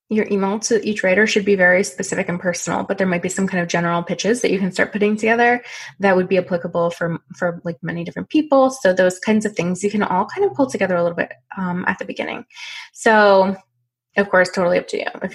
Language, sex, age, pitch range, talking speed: English, female, 20-39, 180-215 Hz, 245 wpm